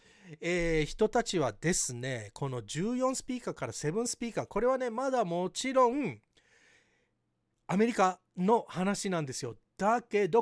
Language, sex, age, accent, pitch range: Japanese, male, 40-59, native, 150-225 Hz